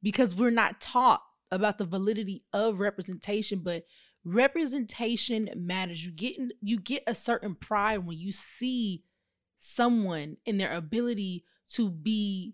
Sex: female